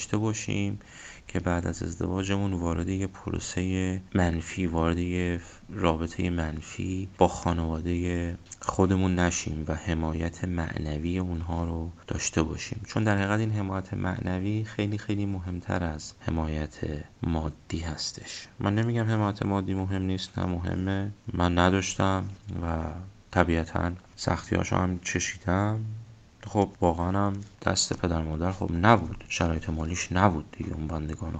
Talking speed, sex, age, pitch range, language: 125 wpm, male, 30-49, 85-100 Hz, Persian